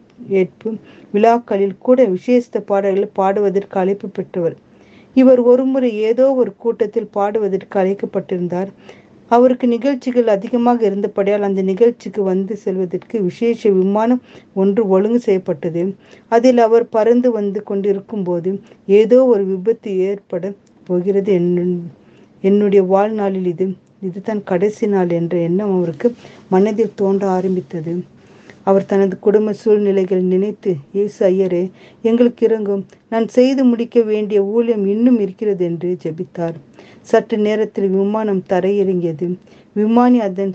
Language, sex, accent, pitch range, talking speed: Tamil, female, native, 185-225 Hz, 110 wpm